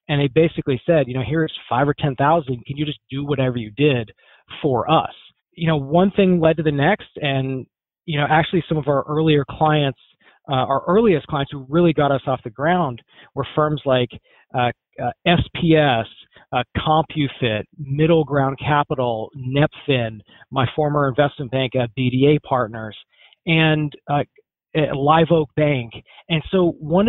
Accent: American